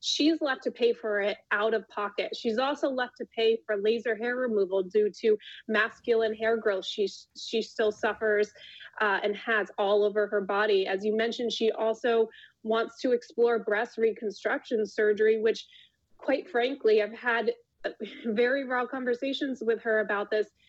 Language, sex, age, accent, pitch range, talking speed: English, female, 20-39, American, 215-245 Hz, 160 wpm